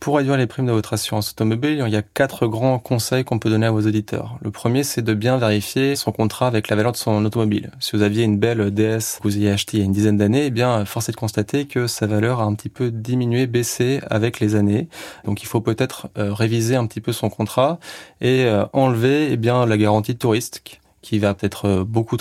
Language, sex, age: French, male, 20-39